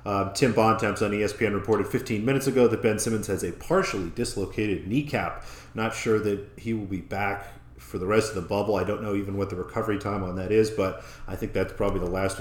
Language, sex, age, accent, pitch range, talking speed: English, male, 40-59, American, 90-110 Hz, 230 wpm